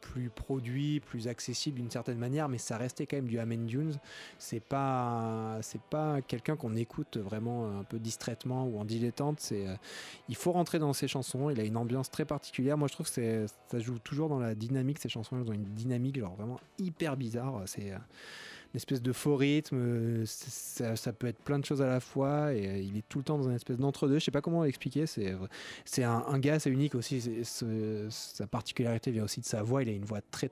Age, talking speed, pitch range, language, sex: 20-39, 230 wpm, 115-140 Hz, French, male